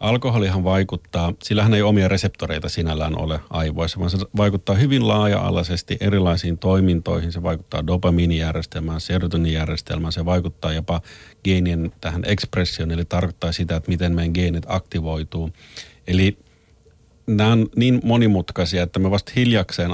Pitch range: 85-105 Hz